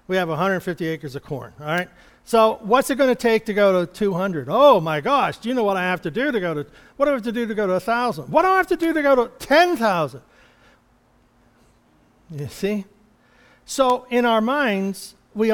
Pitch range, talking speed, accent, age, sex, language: 170-235 Hz, 230 wpm, American, 60-79, male, English